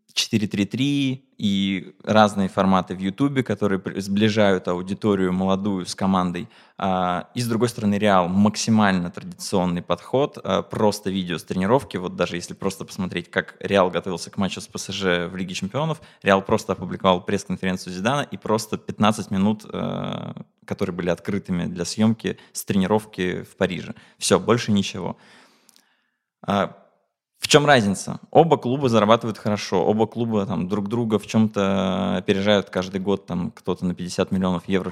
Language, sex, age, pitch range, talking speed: Russian, male, 20-39, 95-115 Hz, 145 wpm